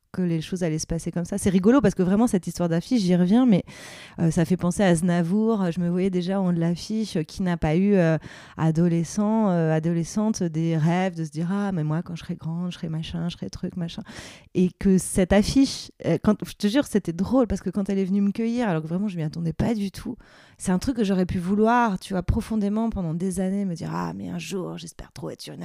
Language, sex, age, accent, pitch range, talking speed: French, female, 20-39, French, 175-210 Hz, 260 wpm